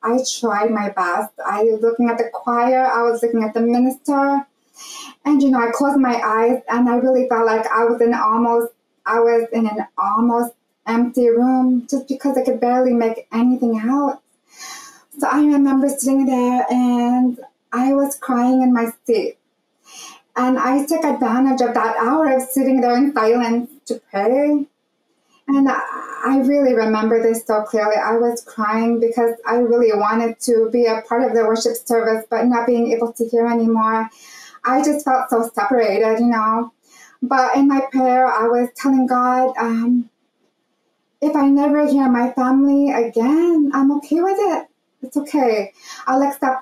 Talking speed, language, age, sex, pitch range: 170 wpm, English, 20-39, female, 230-270 Hz